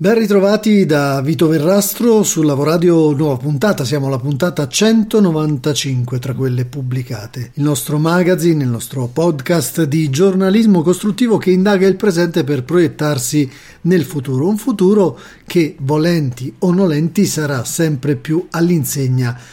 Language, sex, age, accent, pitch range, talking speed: Italian, male, 40-59, native, 140-180 Hz, 130 wpm